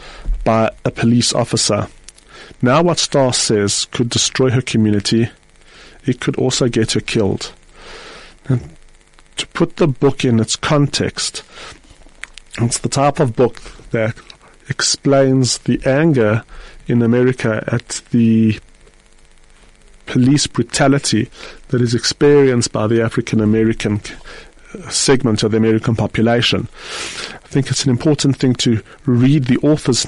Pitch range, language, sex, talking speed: 110-140 Hz, English, male, 125 wpm